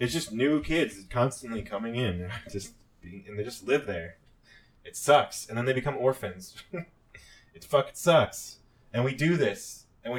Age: 20-39